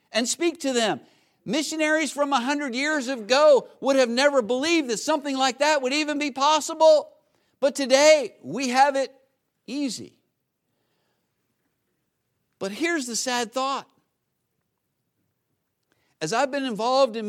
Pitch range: 220-270 Hz